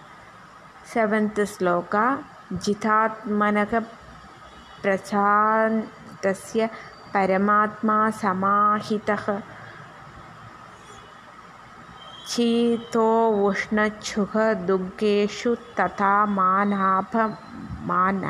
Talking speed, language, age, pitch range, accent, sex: 35 wpm, Tamil, 20-39, 185-215 Hz, native, female